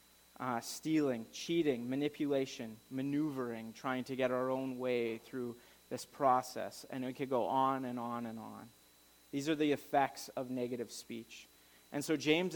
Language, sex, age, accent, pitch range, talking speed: English, male, 30-49, American, 115-140 Hz, 160 wpm